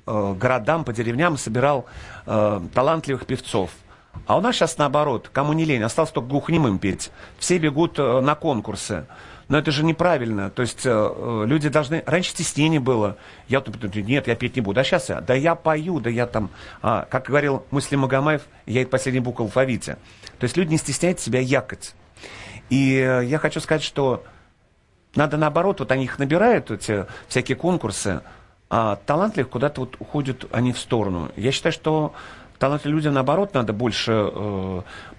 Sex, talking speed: male, 175 wpm